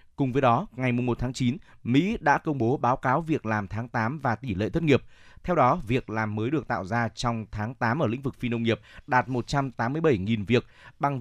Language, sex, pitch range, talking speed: Vietnamese, male, 115-145 Hz, 235 wpm